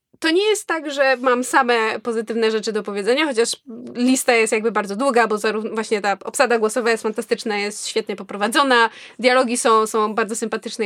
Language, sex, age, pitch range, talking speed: Polish, female, 20-39, 220-265 Hz, 180 wpm